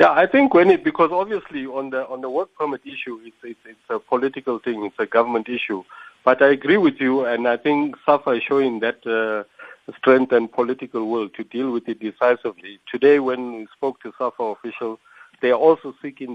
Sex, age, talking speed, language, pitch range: male, 50-69, 210 wpm, English, 120-140 Hz